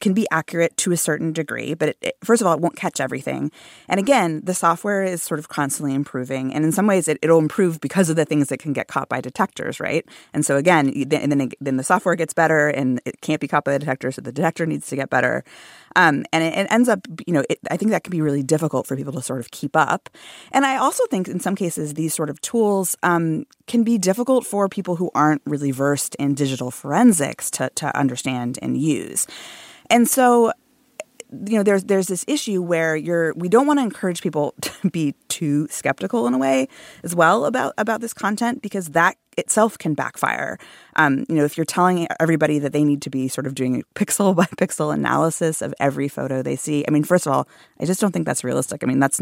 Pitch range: 140-190 Hz